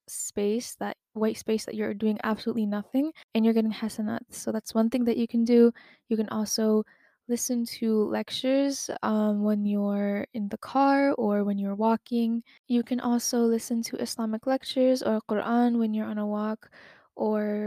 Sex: female